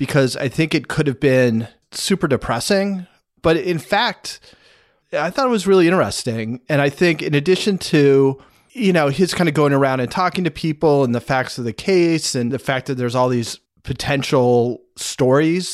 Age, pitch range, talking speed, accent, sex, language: 30-49, 125-165 Hz, 190 wpm, American, male, English